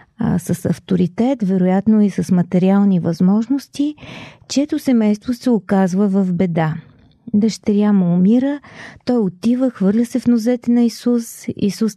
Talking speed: 130 wpm